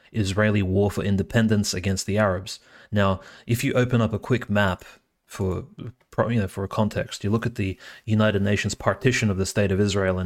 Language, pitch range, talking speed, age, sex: English, 95-105 Hz, 200 wpm, 30-49, male